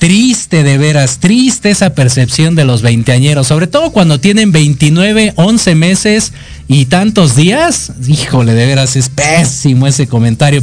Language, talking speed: Spanish, 145 wpm